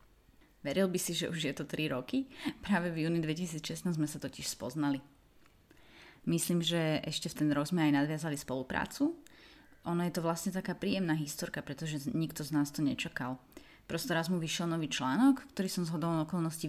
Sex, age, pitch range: female, 30-49, 155-205 Hz